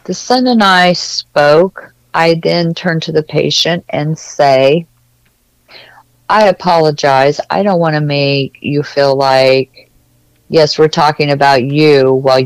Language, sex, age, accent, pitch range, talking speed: English, female, 50-69, American, 130-155 Hz, 140 wpm